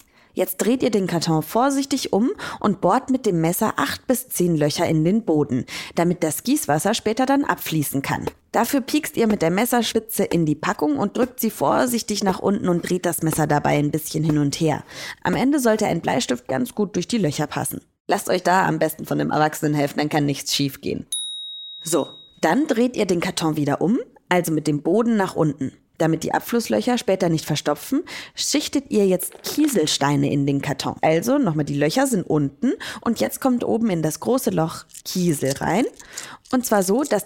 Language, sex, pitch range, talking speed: German, female, 155-230 Hz, 200 wpm